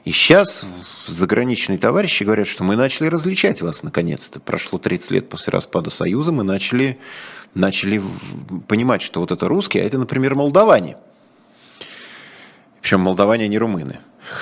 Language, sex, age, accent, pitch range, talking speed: Russian, male, 30-49, native, 90-130 Hz, 140 wpm